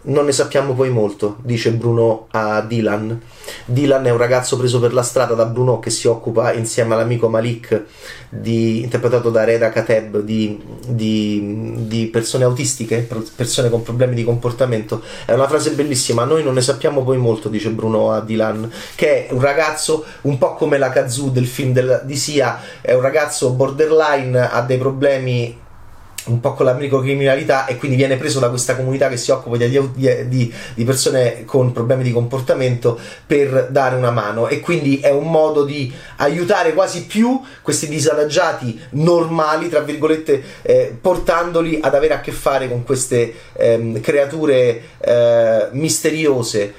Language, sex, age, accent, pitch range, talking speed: Italian, male, 30-49, native, 115-145 Hz, 165 wpm